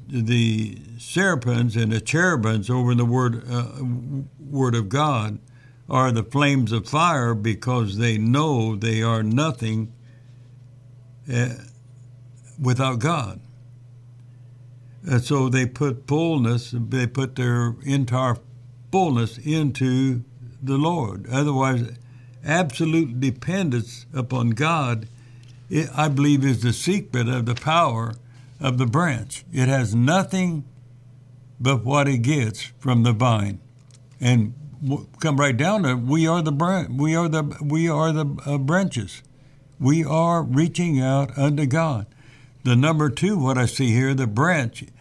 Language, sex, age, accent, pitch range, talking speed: English, male, 60-79, American, 120-145 Hz, 130 wpm